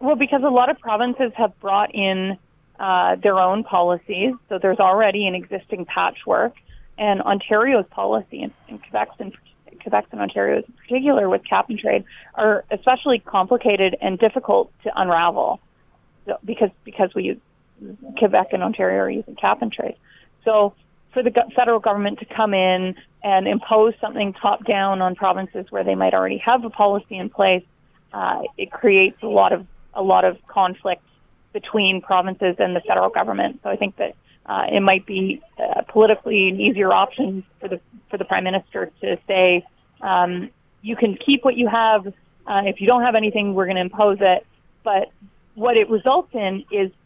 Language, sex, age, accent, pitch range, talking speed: English, female, 30-49, American, 185-225 Hz, 180 wpm